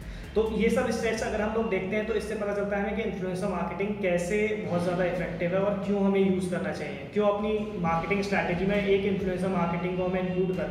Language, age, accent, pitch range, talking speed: Hindi, 20-39, native, 175-210 Hz, 225 wpm